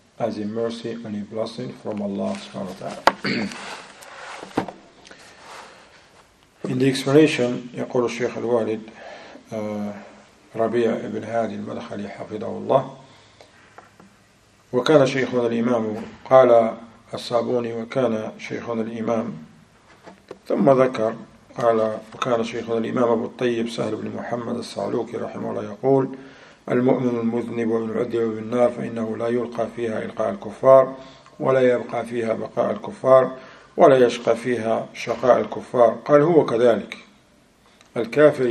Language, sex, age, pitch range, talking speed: English, male, 40-59, 110-125 Hz, 75 wpm